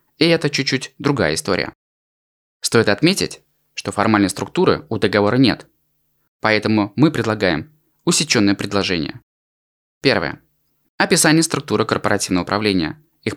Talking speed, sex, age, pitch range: 110 wpm, male, 20-39, 95-150 Hz